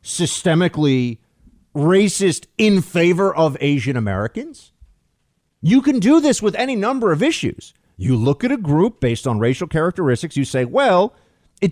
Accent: American